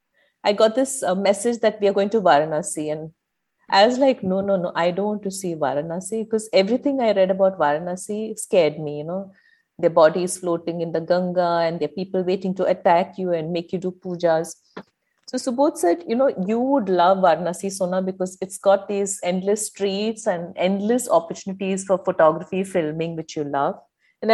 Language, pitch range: English, 170-205 Hz